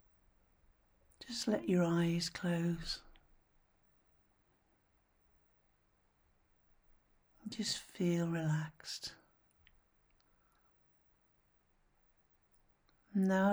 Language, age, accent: English, 60-79, British